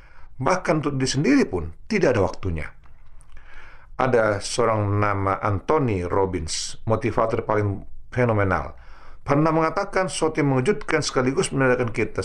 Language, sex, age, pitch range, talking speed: Indonesian, male, 50-69, 95-135 Hz, 115 wpm